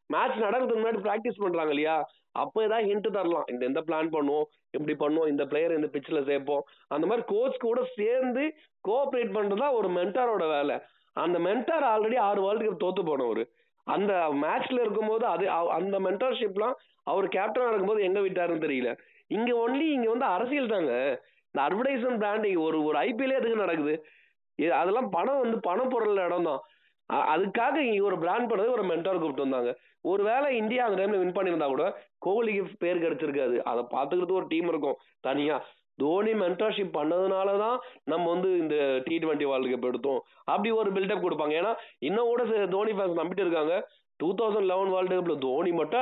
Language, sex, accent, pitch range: Tamil, male, native, 175-240 Hz